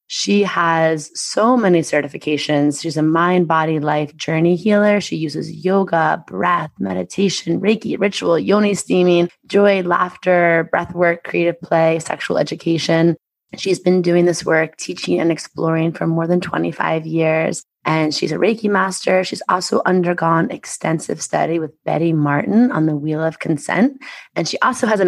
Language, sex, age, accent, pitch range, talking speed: English, female, 20-39, American, 155-185 Hz, 155 wpm